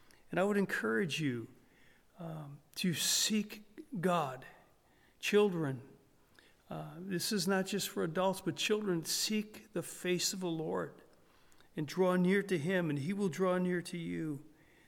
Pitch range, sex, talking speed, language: 160-195 Hz, male, 150 wpm, English